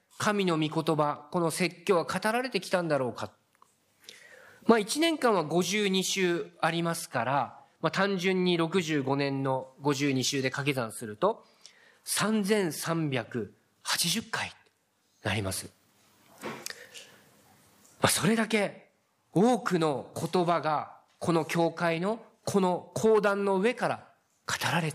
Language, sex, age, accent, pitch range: Japanese, male, 40-59, native, 140-195 Hz